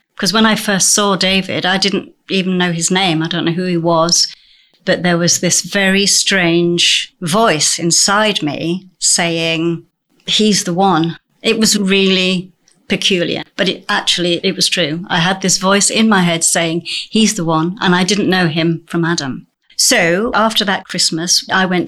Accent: British